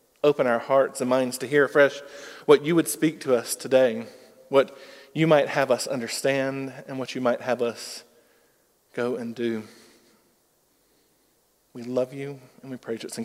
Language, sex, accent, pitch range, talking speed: English, male, American, 130-160 Hz, 175 wpm